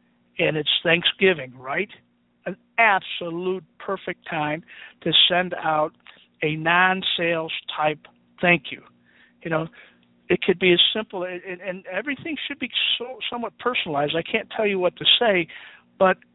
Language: English